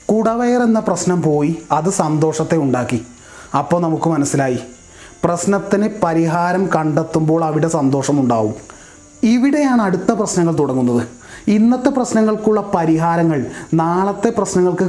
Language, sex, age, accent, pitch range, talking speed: Malayalam, male, 30-49, native, 150-195 Hz, 95 wpm